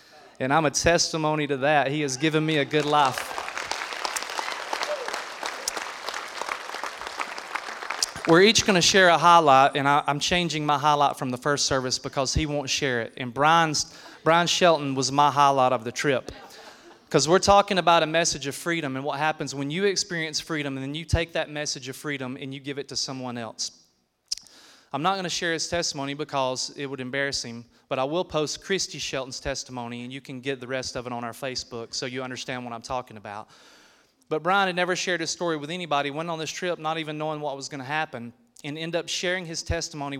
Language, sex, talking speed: English, male, 205 wpm